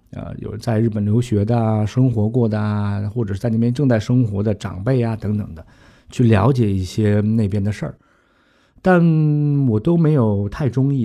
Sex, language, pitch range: male, Chinese, 105-125 Hz